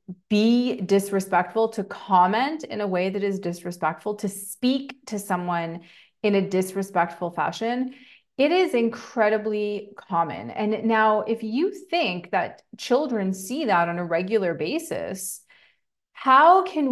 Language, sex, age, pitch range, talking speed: English, female, 30-49, 180-230 Hz, 130 wpm